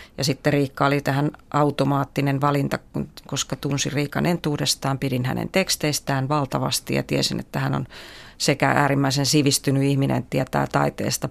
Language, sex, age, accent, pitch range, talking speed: Finnish, female, 30-49, native, 135-150 Hz, 145 wpm